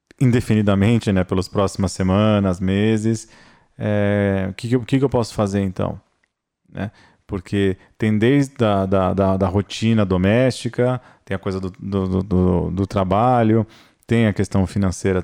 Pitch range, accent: 95-110 Hz, Brazilian